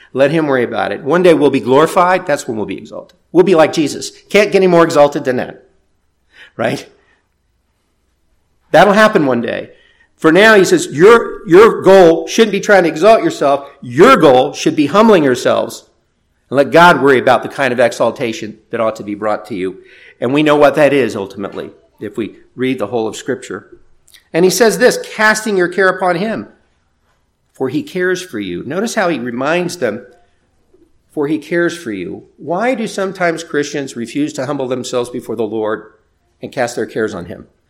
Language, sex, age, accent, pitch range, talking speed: English, male, 50-69, American, 125-195 Hz, 195 wpm